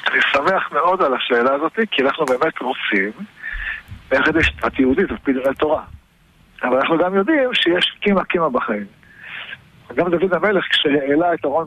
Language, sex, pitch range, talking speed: Hebrew, male, 145-205 Hz, 160 wpm